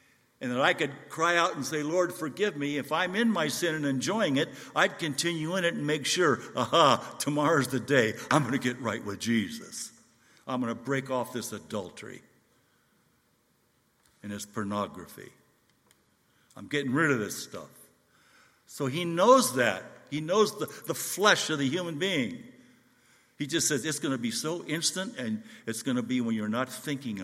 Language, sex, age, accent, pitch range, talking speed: English, male, 60-79, American, 115-155 Hz, 185 wpm